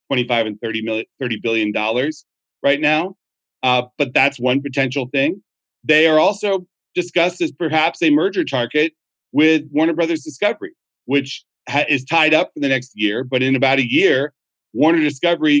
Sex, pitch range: male, 125-175 Hz